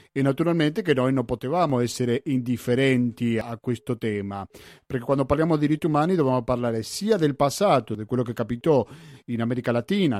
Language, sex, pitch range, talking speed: Italian, male, 110-140 Hz, 180 wpm